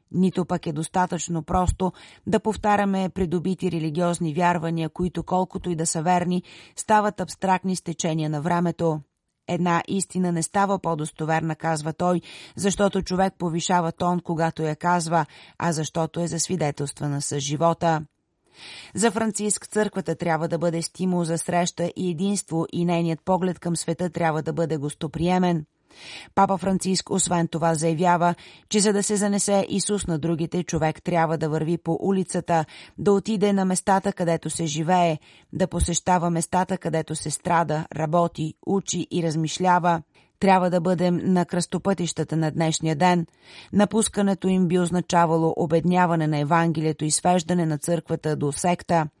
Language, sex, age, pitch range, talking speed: Bulgarian, female, 30-49, 165-185 Hz, 145 wpm